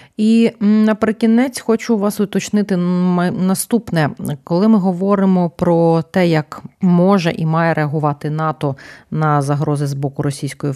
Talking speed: 125 wpm